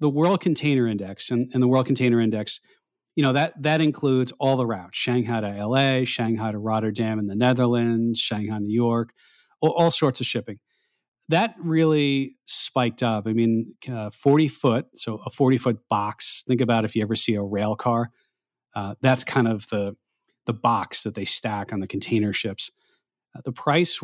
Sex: male